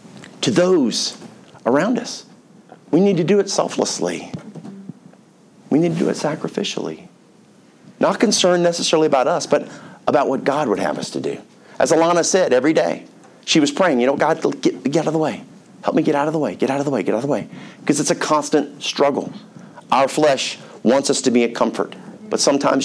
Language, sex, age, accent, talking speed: English, male, 40-59, American, 205 wpm